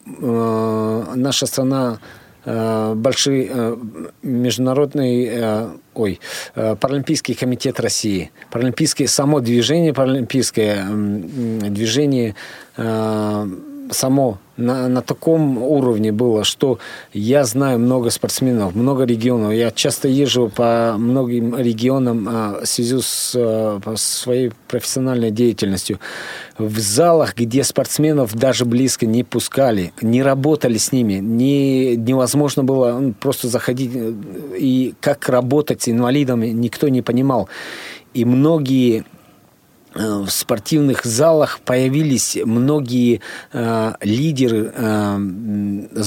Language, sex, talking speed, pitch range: Russian, male, 95 wpm, 115-135 Hz